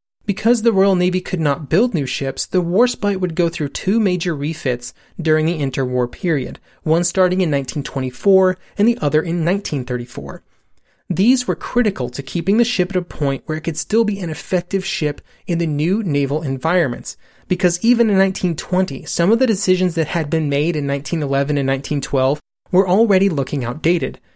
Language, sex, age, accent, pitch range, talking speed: English, male, 30-49, American, 135-185 Hz, 180 wpm